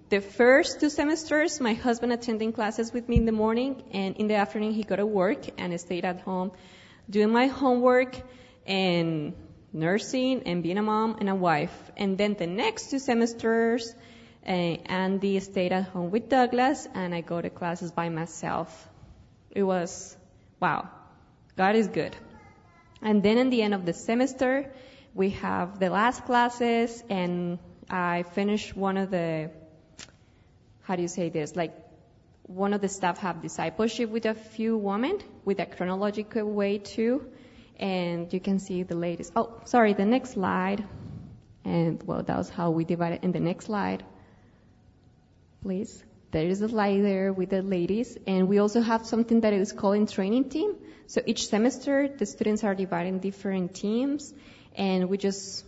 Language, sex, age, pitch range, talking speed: English, female, 20-39, 180-230 Hz, 170 wpm